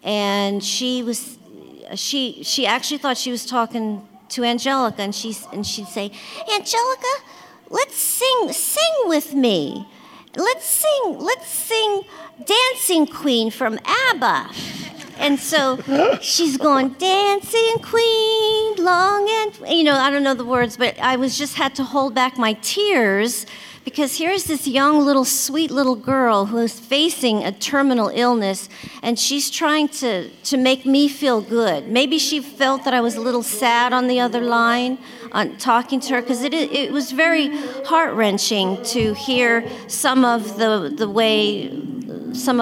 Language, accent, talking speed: English, American, 155 wpm